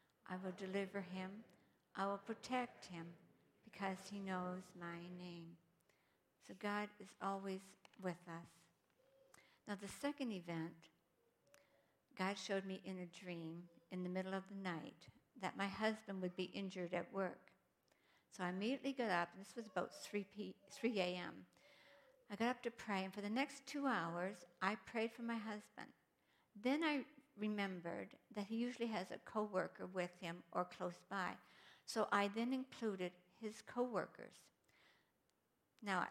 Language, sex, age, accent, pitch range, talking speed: English, female, 60-79, American, 180-220 Hz, 150 wpm